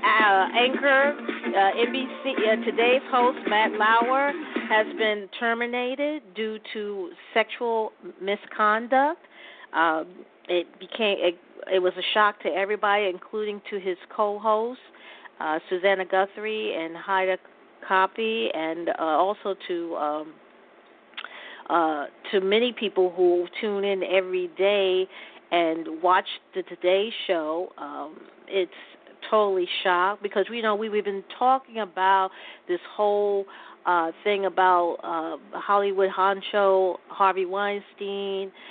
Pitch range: 185-215 Hz